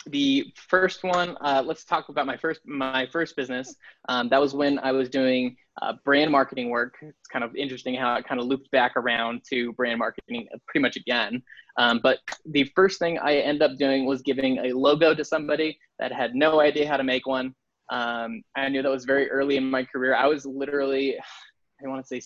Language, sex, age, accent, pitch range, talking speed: English, male, 20-39, American, 125-150 Hz, 215 wpm